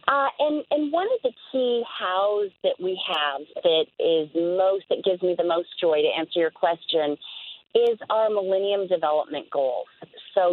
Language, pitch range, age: English, 170-210 Hz, 40-59